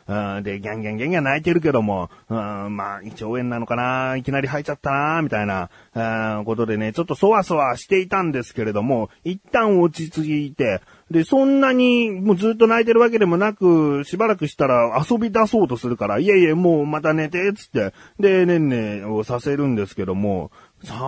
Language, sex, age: Japanese, male, 30-49